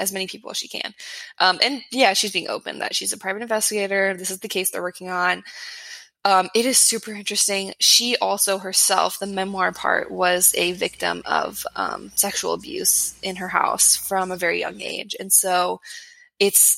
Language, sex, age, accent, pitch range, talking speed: English, female, 20-39, American, 185-235 Hz, 190 wpm